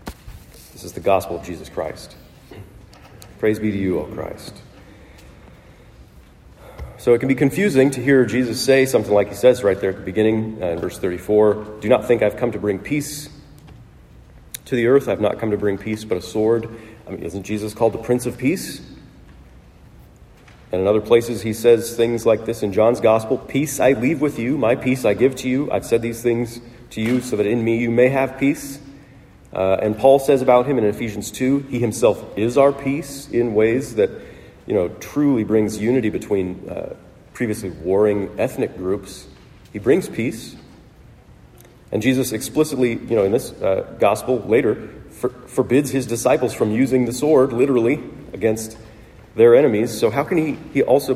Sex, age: male, 40-59